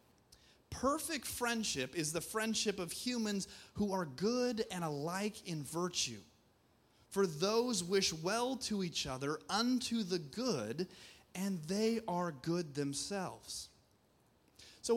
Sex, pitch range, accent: male, 150-235 Hz, American